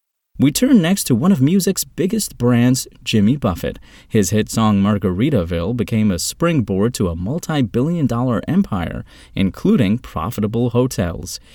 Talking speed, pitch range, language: 135 wpm, 95-130 Hz, English